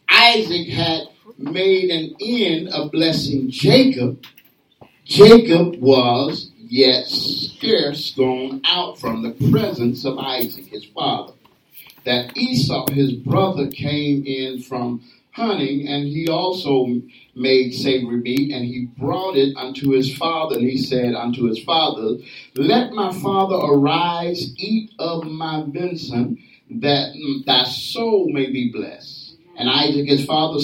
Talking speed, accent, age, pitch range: 130 wpm, American, 50-69, 135-200 Hz